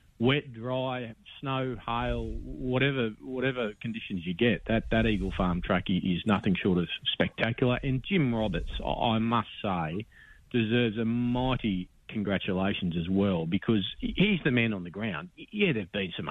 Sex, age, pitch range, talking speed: male, 40-59, 95-125 Hz, 160 wpm